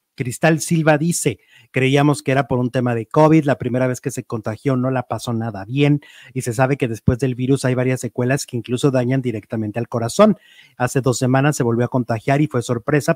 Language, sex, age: Spanish, male, 30-49